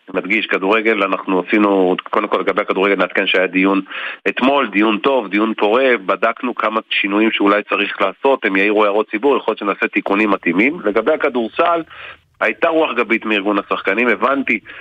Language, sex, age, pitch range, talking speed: Hebrew, male, 40-59, 100-130 Hz, 160 wpm